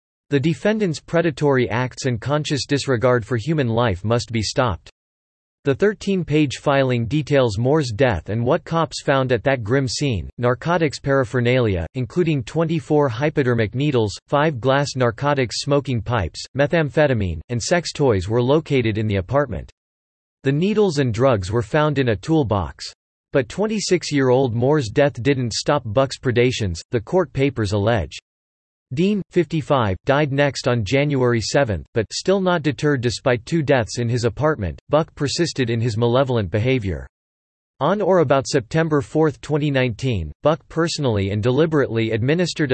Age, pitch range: 40-59, 115-150 Hz